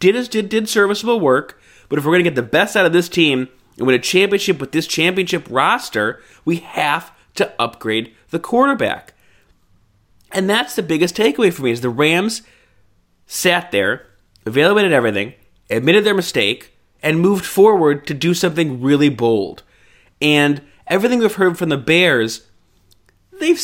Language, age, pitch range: English, 30-49, 115-175 Hz